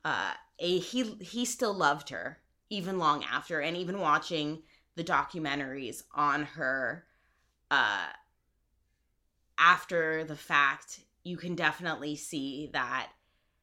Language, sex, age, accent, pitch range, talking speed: English, female, 20-39, American, 145-185 Hz, 110 wpm